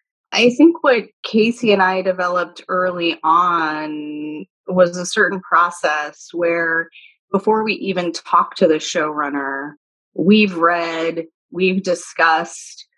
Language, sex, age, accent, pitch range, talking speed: English, female, 30-49, American, 160-210 Hz, 115 wpm